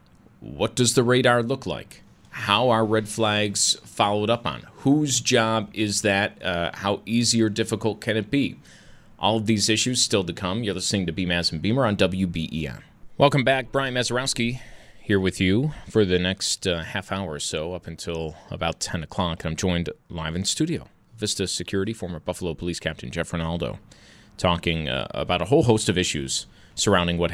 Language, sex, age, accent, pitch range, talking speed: English, male, 30-49, American, 90-120 Hz, 185 wpm